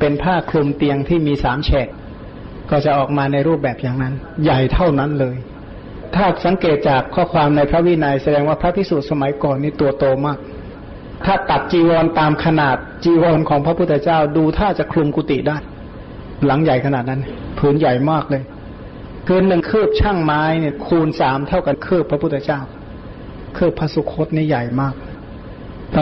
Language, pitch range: Thai, 140-165 Hz